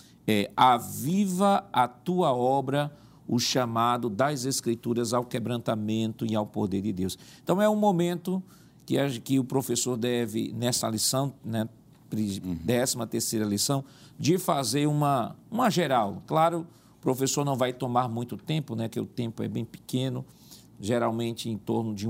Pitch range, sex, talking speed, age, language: 115-150 Hz, male, 145 wpm, 50-69, Portuguese